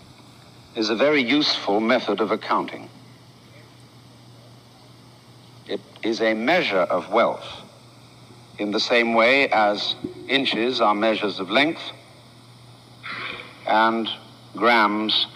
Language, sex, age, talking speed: English, male, 60-79, 100 wpm